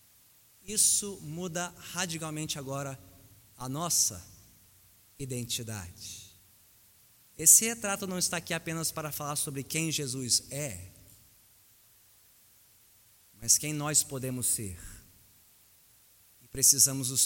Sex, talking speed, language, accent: male, 95 wpm, Portuguese, Brazilian